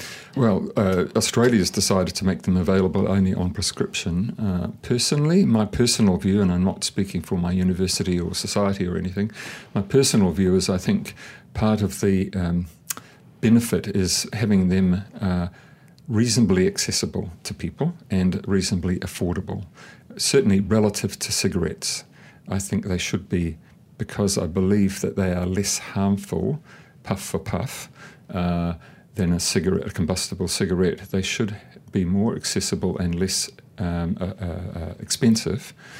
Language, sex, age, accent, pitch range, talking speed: English, male, 50-69, British, 90-105 Hz, 145 wpm